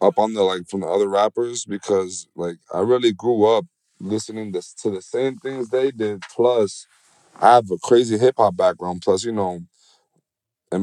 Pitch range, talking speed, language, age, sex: 95-115 Hz, 175 wpm, English, 20-39, male